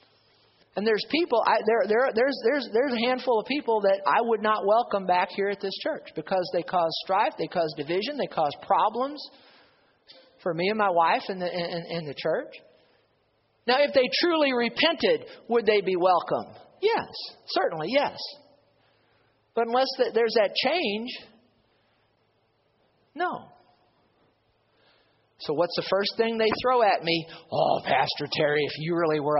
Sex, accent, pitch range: male, American, 150-230 Hz